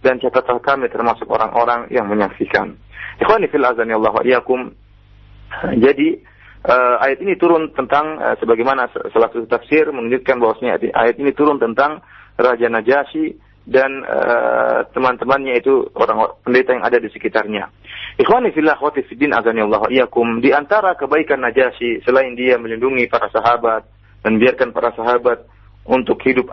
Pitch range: 110-155 Hz